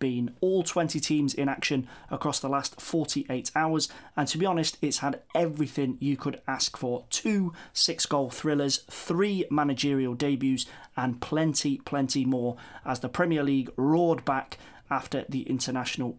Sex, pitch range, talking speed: male, 130-160 Hz, 150 wpm